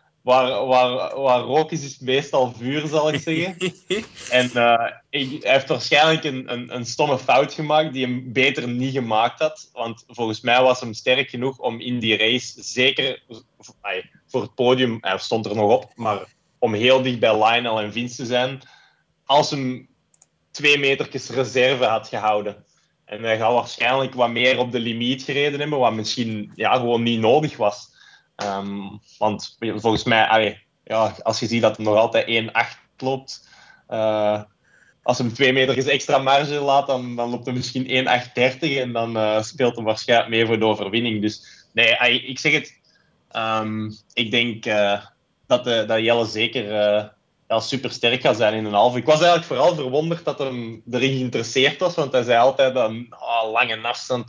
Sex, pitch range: male, 110-135 Hz